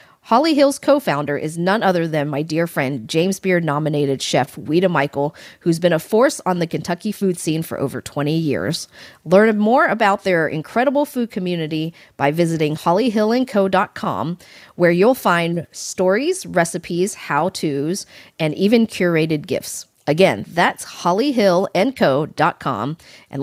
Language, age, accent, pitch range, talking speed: English, 40-59, American, 155-220 Hz, 135 wpm